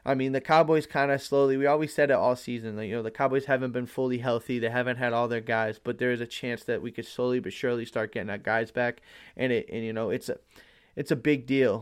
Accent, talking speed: American, 280 wpm